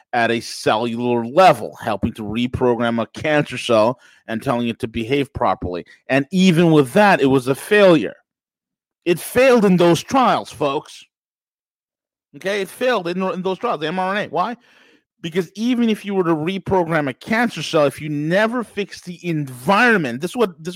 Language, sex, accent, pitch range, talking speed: English, male, American, 130-180 Hz, 170 wpm